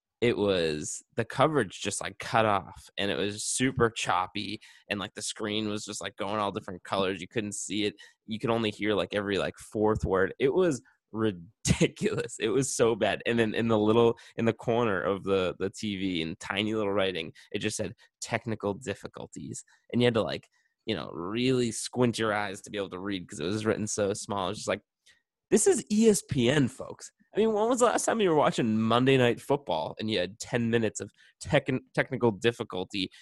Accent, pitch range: American, 105-130 Hz